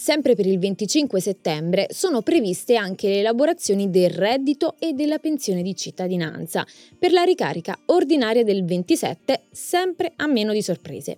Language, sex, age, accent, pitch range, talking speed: Italian, female, 20-39, native, 190-270 Hz, 150 wpm